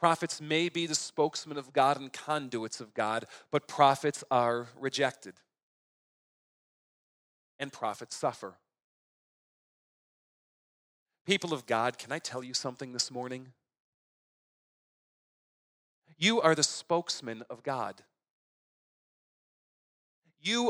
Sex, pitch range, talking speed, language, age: male, 125-165 Hz, 100 wpm, English, 40-59